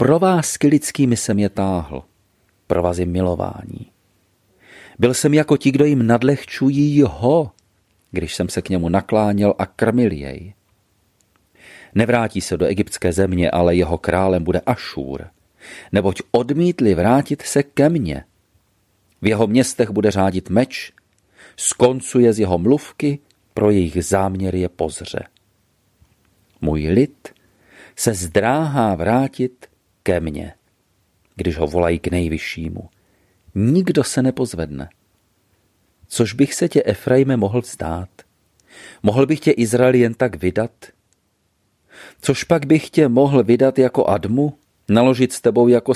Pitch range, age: 90-125 Hz, 40-59